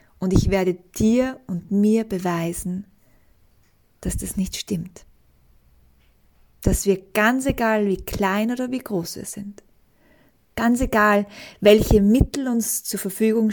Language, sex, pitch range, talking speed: German, female, 180-220 Hz, 130 wpm